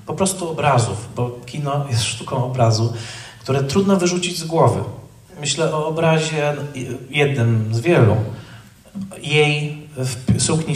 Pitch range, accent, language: 125-155 Hz, native, Polish